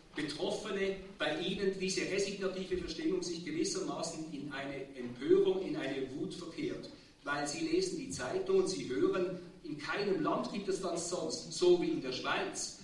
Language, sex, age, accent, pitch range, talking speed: German, male, 50-69, German, 150-195 Hz, 165 wpm